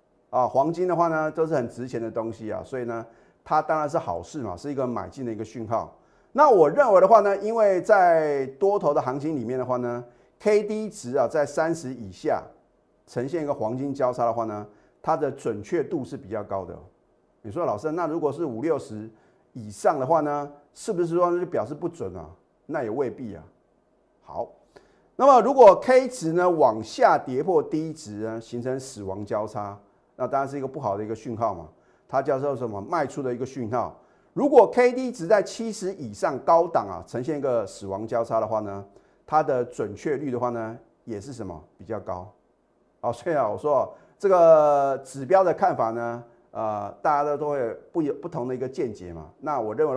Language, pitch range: Chinese, 115-155 Hz